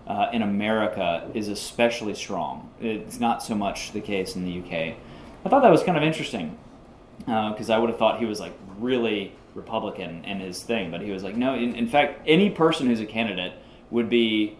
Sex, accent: male, American